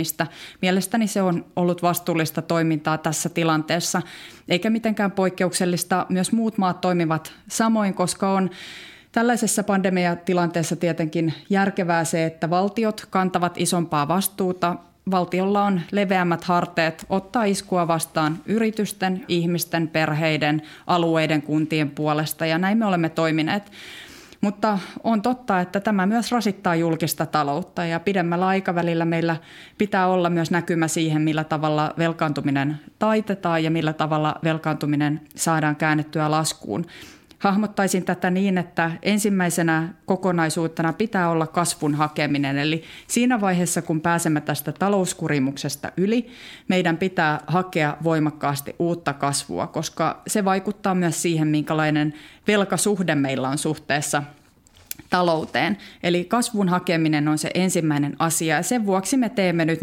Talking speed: 120 wpm